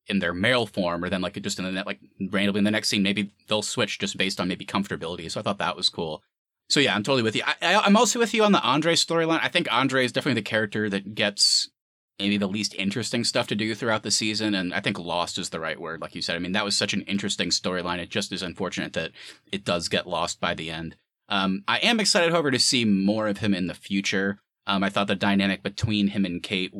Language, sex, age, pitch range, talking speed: English, male, 30-49, 95-115 Hz, 260 wpm